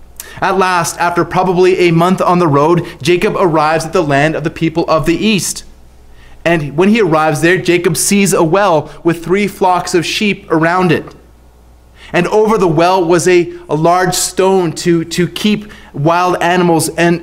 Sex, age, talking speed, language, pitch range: male, 30-49, 180 wpm, English, 115-180 Hz